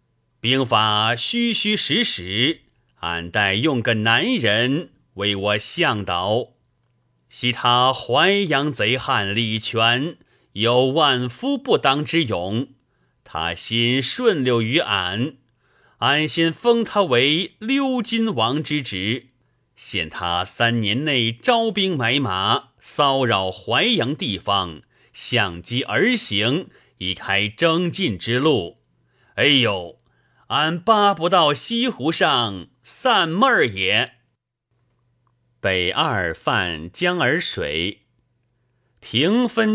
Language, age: Chinese, 30-49